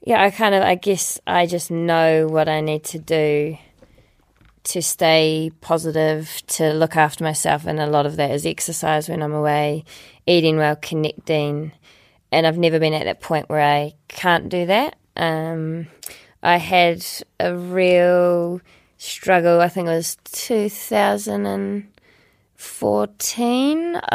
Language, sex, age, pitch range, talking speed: English, female, 20-39, 155-175 Hz, 150 wpm